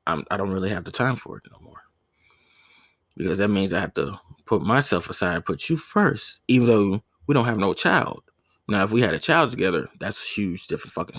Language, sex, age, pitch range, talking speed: English, male, 20-39, 90-120 Hz, 220 wpm